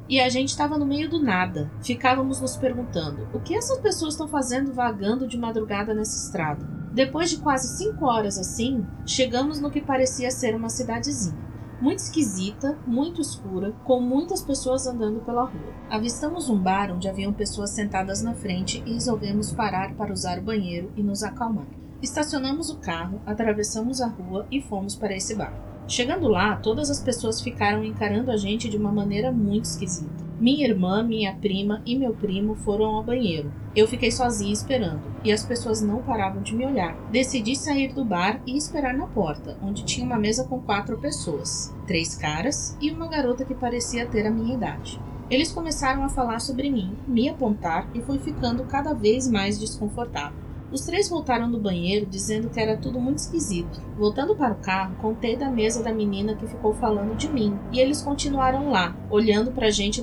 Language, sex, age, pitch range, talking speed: Portuguese, female, 30-49, 205-260 Hz, 185 wpm